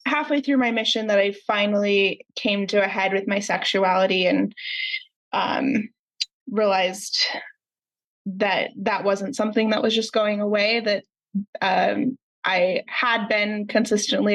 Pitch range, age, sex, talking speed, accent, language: 195-235 Hz, 20-39, female, 135 wpm, American, English